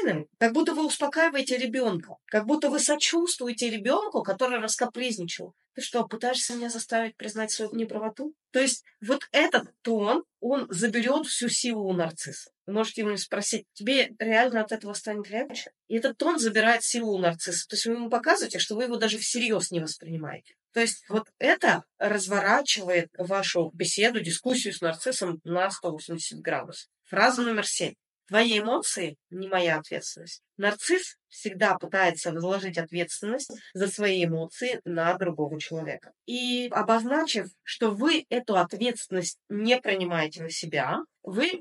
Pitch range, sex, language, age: 180-245 Hz, female, Russian, 20-39